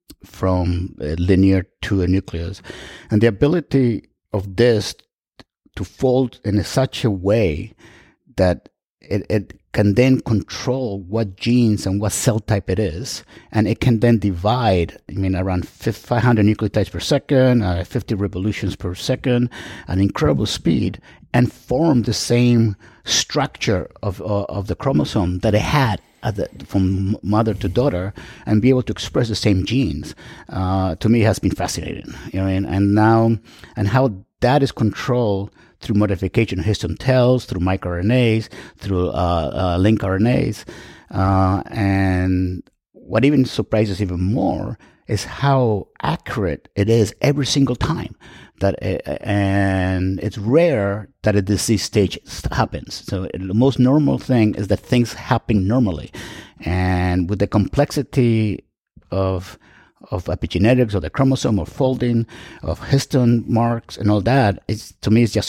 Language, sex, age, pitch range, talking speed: English, male, 50-69, 95-120 Hz, 150 wpm